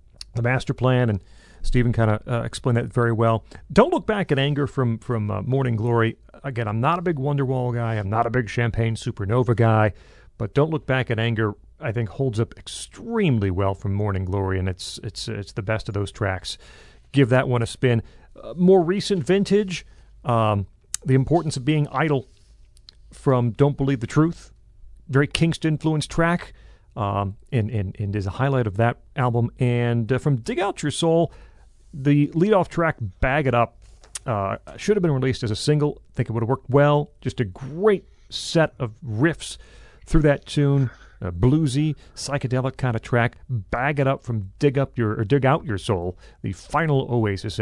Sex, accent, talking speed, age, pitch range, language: male, American, 195 wpm, 40-59, 110-145 Hz, English